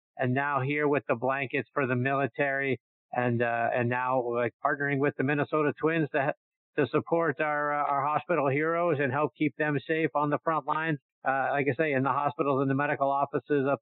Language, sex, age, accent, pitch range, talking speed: English, male, 50-69, American, 125-160 Hz, 215 wpm